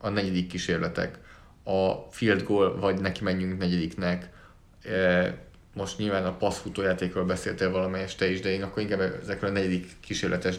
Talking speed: 145 wpm